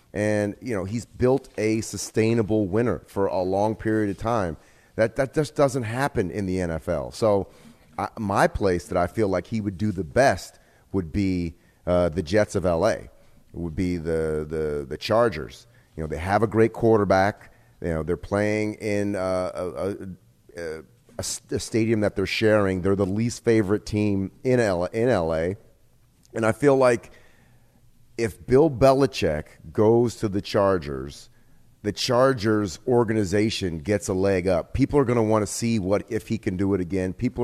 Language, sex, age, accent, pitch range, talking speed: English, male, 30-49, American, 95-120 Hz, 175 wpm